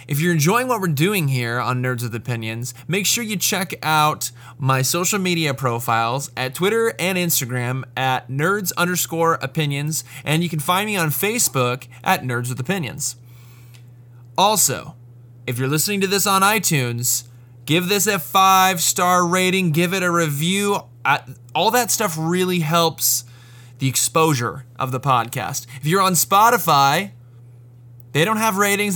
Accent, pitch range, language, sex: American, 125-185 Hz, English, male